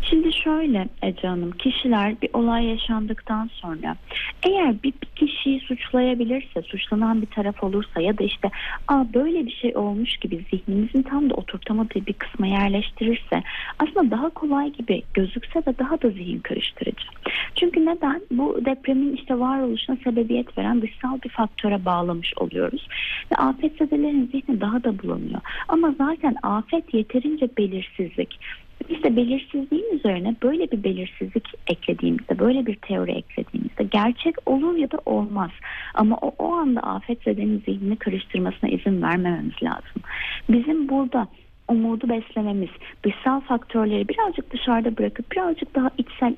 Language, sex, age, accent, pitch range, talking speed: Turkish, female, 30-49, native, 210-275 Hz, 140 wpm